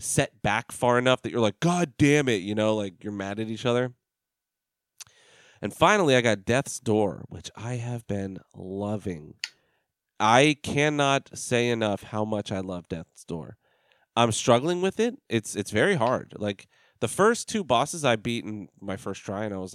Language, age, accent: English, 30-49, American